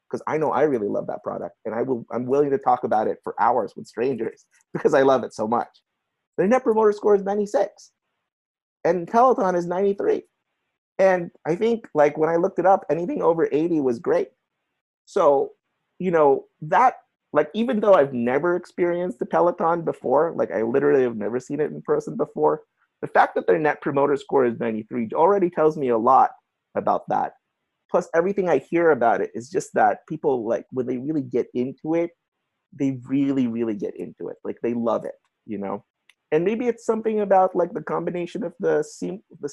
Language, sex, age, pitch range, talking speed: English, male, 30-49, 140-230 Hz, 200 wpm